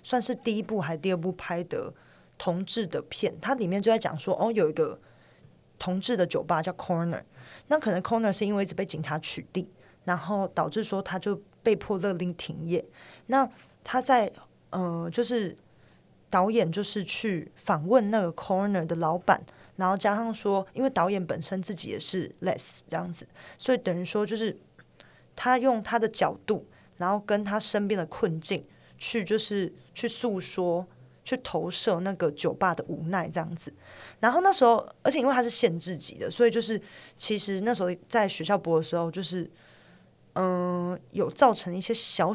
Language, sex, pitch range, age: Chinese, female, 180-230 Hz, 20-39